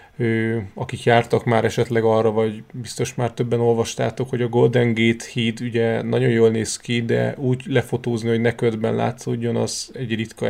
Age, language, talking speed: 30-49, Hungarian, 175 wpm